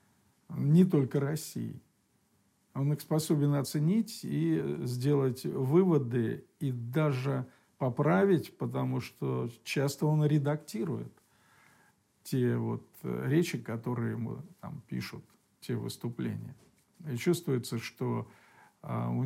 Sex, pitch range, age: male, 120-145 Hz, 50-69